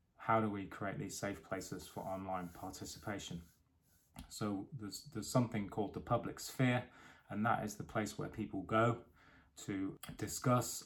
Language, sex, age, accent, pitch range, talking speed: English, male, 20-39, British, 95-115 Hz, 155 wpm